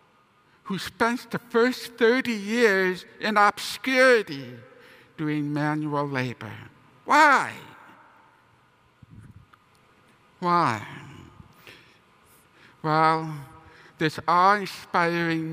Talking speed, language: 60 wpm, English